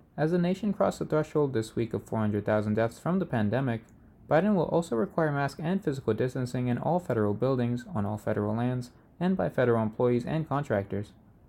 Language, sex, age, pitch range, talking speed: English, male, 20-39, 110-160 Hz, 190 wpm